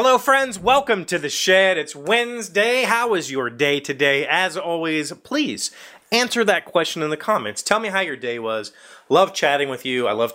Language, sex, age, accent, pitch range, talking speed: English, male, 30-49, American, 120-175 Hz, 195 wpm